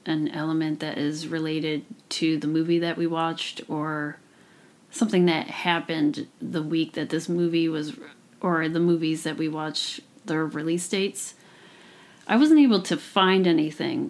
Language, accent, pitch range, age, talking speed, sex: English, American, 160-175 Hz, 30-49, 155 wpm, female